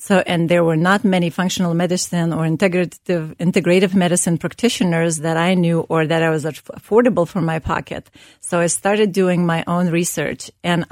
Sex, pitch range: female, 165-190 Hz